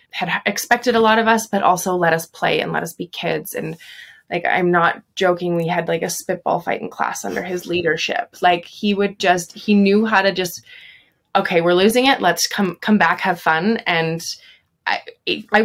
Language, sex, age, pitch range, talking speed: English, female, 20-39, 160-210 Hz, 205 wpm